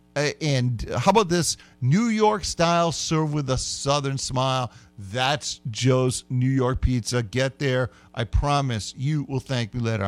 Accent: American